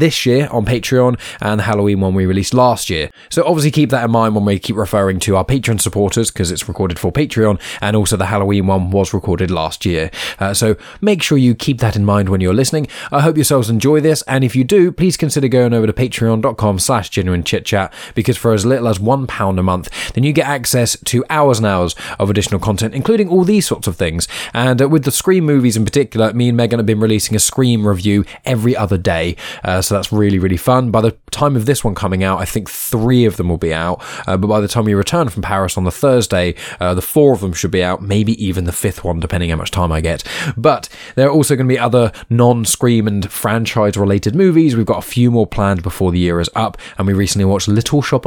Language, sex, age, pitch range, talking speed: English, male, 20-39, 95-125 Hz, 245 wpm